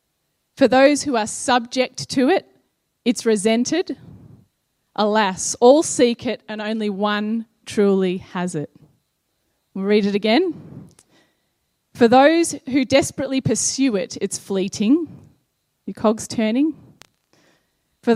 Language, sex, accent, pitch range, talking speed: English, female, Australian, 200-265 Hz, 115 wpm